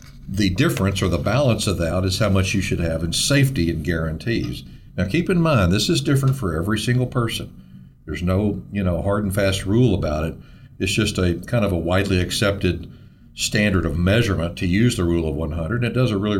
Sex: male